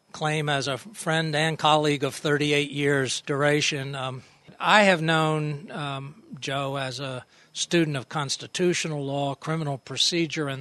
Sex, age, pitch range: male, 60-79, 145-170 Hz